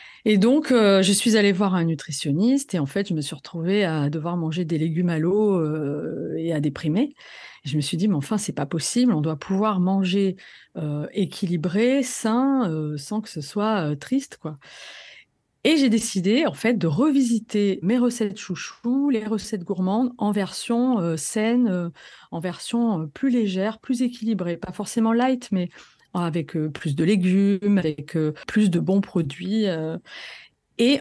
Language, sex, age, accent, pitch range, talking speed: French, female, 40-59, French, 170-230 Hz, 175 wpm